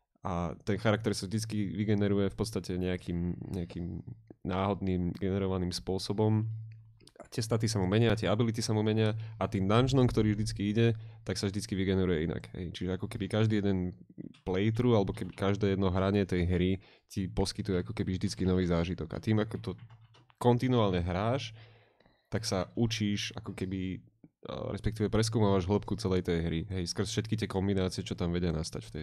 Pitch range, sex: 90-105 Hz, male